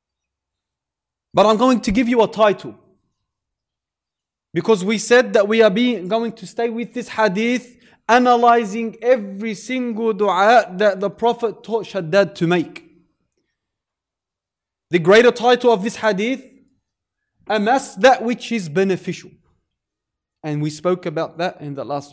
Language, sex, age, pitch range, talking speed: English, male, 20-39, 145-230 Hz, 135 wpm